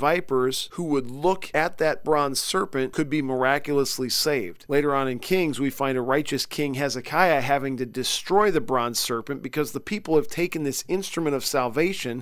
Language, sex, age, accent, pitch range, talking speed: English, male, 40-59, American, 130-155 Hz, 180 wpm